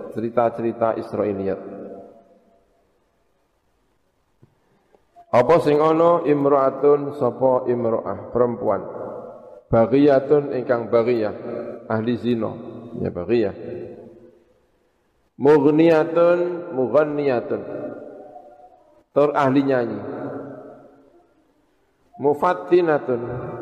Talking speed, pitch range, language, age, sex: 50 wpm, 115-140 Hz, Indonesian, 50-69, male